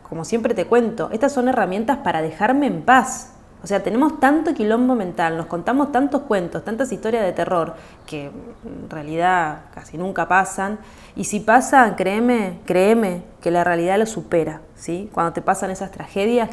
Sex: female